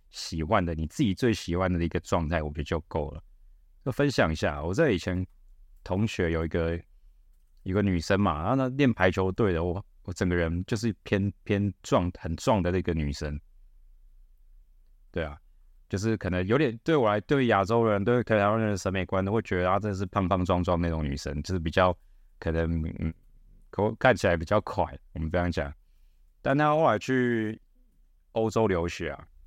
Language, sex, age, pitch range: Chinese, male, 30-49, 80-110 Hz